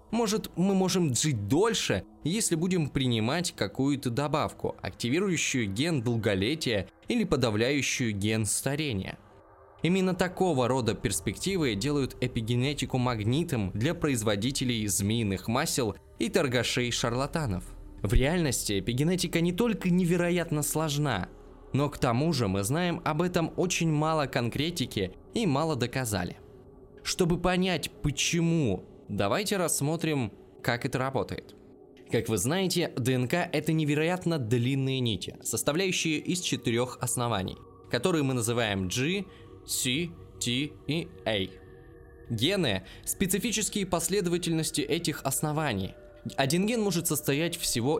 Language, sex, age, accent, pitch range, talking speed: Russian, male, 20-39, native, 120-165 Hz, 115 wpm